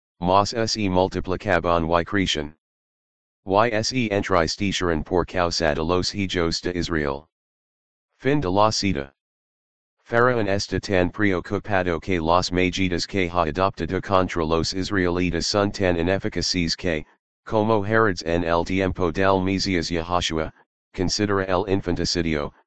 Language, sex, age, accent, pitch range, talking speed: English, male, 40-59, American, 85-100 Hz, 130 wpm